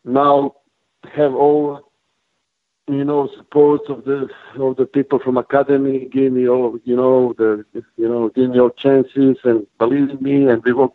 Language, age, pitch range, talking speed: English, 50-69, 125-140 Hz, 175 wpm